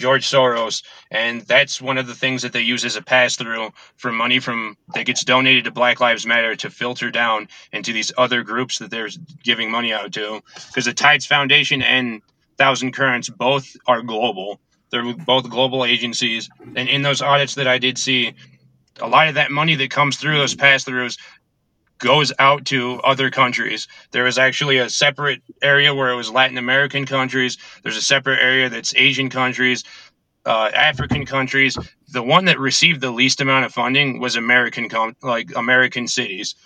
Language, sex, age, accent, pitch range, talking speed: English, male, 30-49, American, 120-135 Hz, 180 wpm